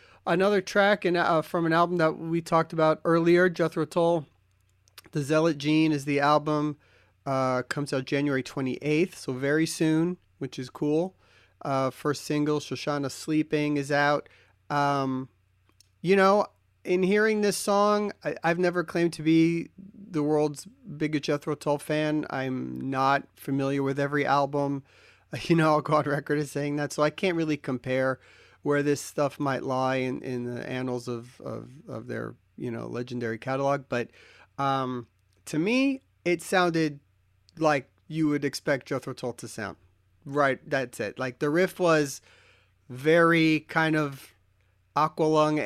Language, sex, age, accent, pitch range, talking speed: English, male, 40-59, American, 130-160 Hz, 155 wpm